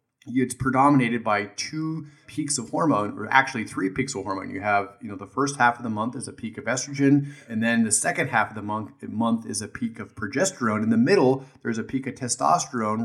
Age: 30-49